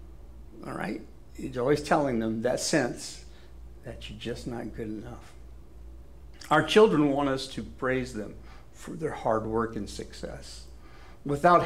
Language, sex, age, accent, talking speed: English, male, 60-79, American, 145 wpm